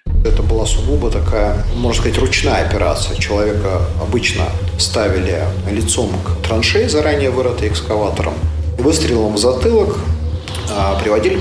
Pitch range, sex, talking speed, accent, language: 85-100 Hz, male, 110 wpm, native, Russian